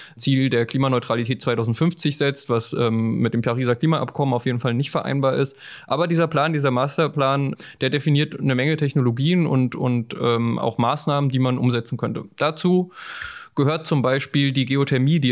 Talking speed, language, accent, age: 170 wpm, German, German, 20-39